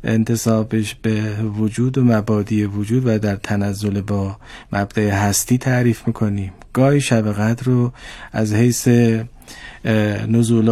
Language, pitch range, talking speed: Persian, 110-135 Hz, 110 wpm